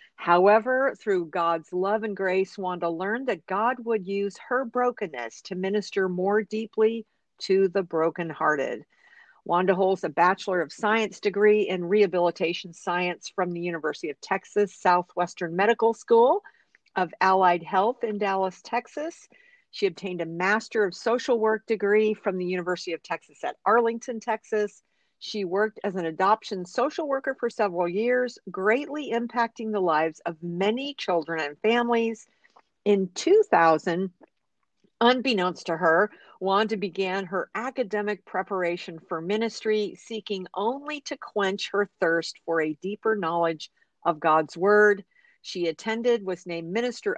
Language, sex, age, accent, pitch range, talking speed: English, female, 50-69, American, 180-225 Hz, 140 wpm